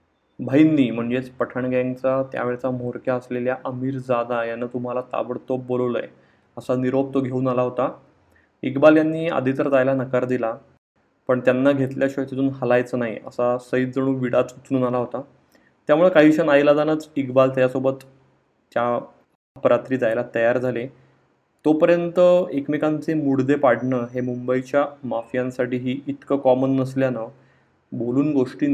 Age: 20-39